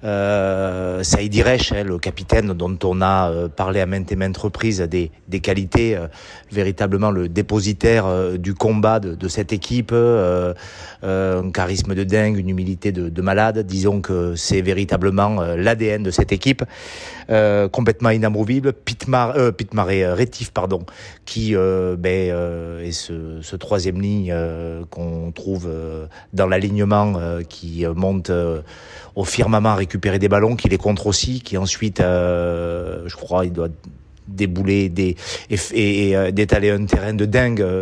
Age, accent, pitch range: 30-49, French, 90-105 Hz